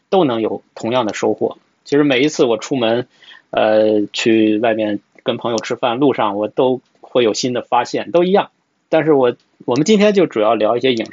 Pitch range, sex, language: 110-150 Hz, male, Chinese